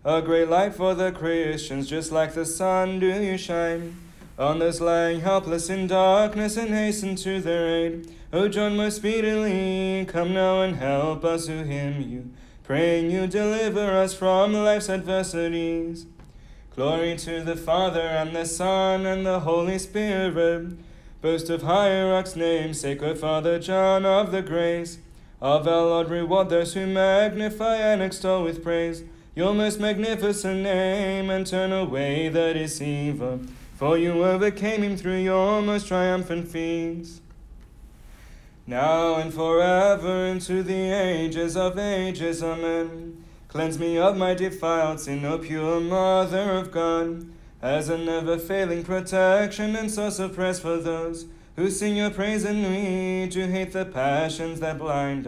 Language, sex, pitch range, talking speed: English, male, 165-190 Hz, 145 wpm